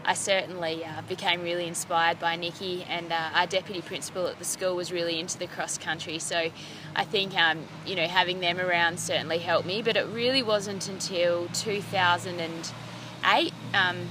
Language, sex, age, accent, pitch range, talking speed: English, female, 20-39, Australian, 175-215 Hz, 165 wpm